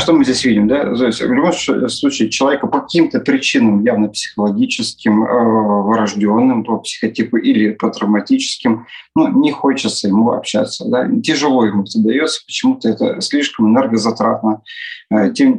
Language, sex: Russian, male